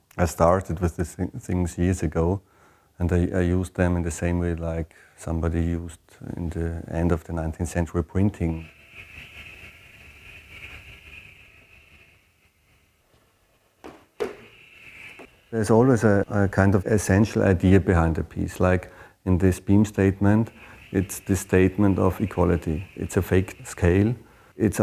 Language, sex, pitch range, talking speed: German, male, 85-100 Hz, 130 wpm